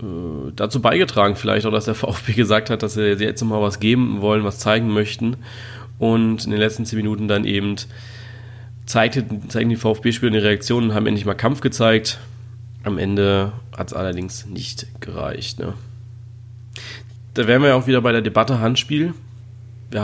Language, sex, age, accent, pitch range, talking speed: German, male, 30-49, German, 110-125 Hz, 175 wpm